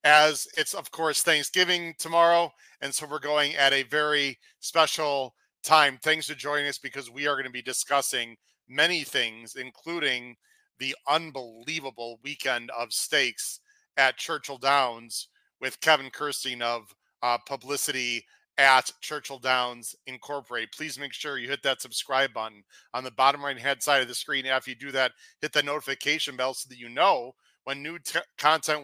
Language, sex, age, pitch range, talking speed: English, male, 40-59, 130-150 Hz, 165 wpm